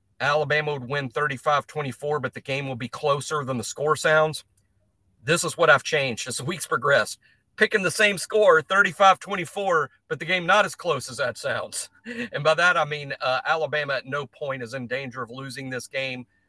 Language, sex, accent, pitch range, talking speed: English, male, American, 130-170 Hz, 205 wpm